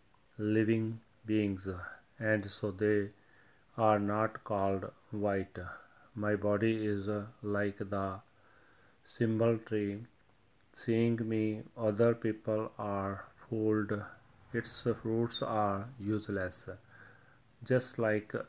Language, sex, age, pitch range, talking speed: Punjabi, male, 40-59, 100-115 Hz, 90 wpm